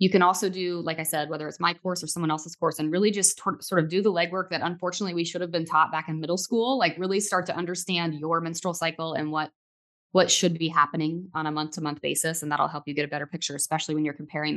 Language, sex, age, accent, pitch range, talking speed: English, female, 20-39, American, 155-180 Hz, 270 wpm